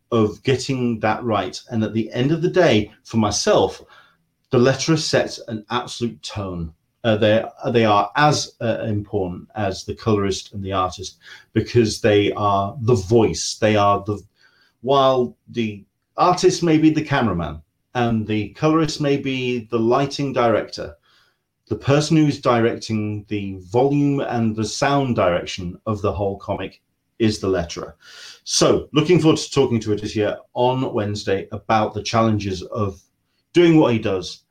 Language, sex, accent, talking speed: English, male, British, 160 wpm